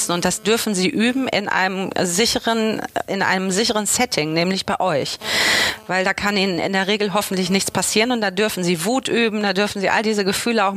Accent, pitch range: German, 180-220 Hz